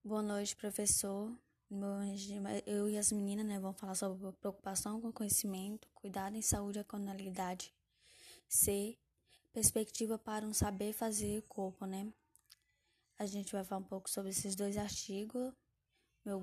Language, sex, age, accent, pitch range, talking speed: Portuguese, female, 10-29, Brazilian, 200-230 Hz, 145 wpm